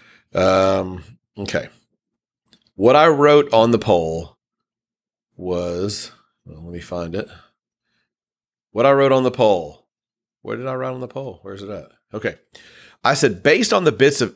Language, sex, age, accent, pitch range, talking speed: English, male, 40-59, American, 100-130 Hz, 155 wpm